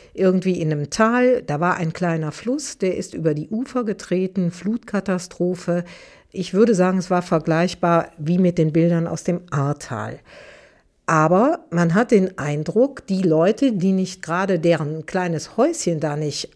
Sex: female